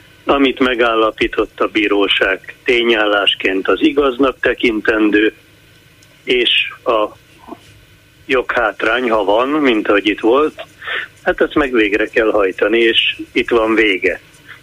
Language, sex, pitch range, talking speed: Hungarian, male, 110-155 Hz, 110 wpm